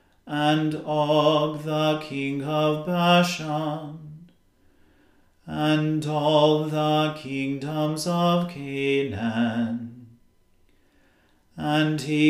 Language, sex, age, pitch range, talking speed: English, male, 40-59, 140-155 Hz, 70 wpm